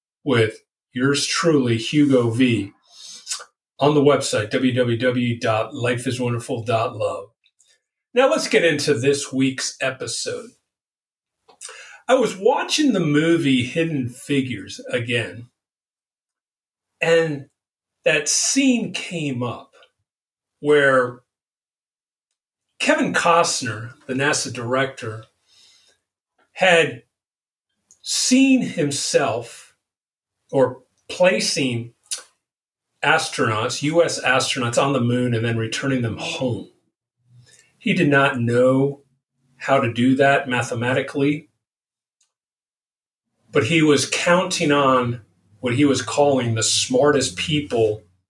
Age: 40-59